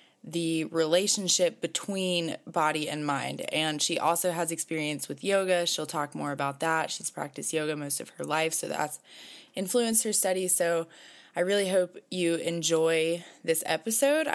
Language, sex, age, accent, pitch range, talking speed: English, female, 20-39, American, 155-185 Hz, 160 wpm